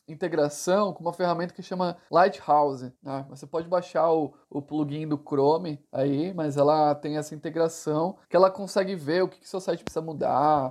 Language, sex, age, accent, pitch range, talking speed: Portuguese, male, 20-39, Brazilian, 145-190 Hz, 190 wpm